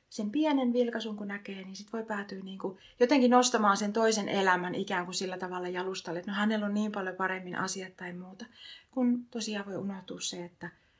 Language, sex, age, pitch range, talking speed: Finnish, female, 30-49, 190-230 Hz, 200 wpm